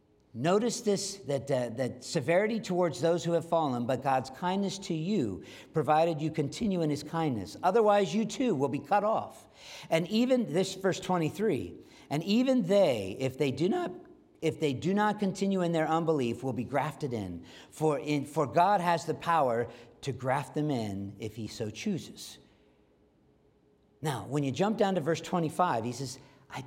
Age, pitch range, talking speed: 50-69, 135-190 Hz, 180 wpm